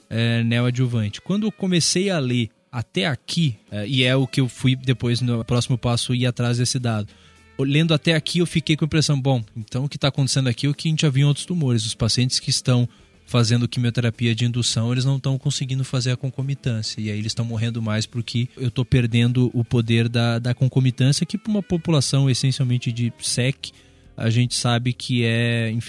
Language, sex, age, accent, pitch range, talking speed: Portuguese, male, 20-39, Brazilian, 115-135 Hz, 200 wpm